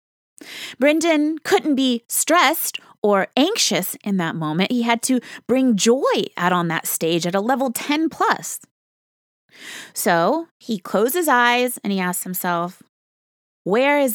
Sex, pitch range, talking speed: female, 200-270 Hz, 145 wpm